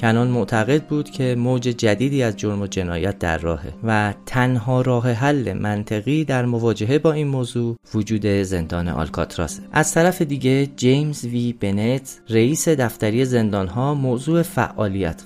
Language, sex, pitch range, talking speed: Persian, male, 100-130 Hz, 140 wpm